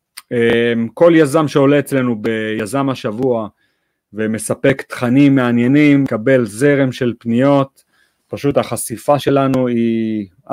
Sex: male